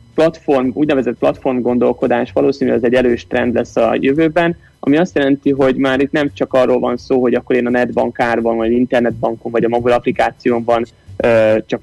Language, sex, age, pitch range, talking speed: Hungarian, male, 30-49, 115-135 Hz, 180 wpm